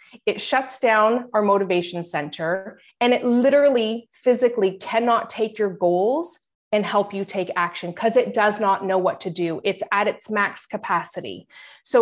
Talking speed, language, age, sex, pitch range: 165 wpm, English, 30-49, female, 200-265 Hz